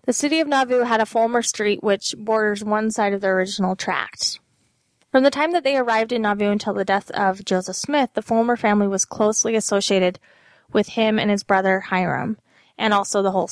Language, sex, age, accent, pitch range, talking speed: English, female, 20-39, American, 200-235 Hz, 205 wpm